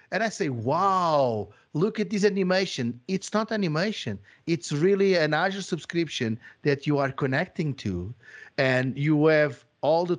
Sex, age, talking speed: male, 50-69, 155 wpm